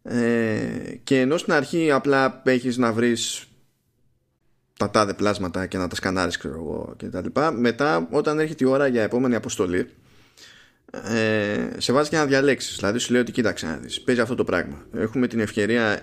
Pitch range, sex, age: 105-140 Hz, male, 20-39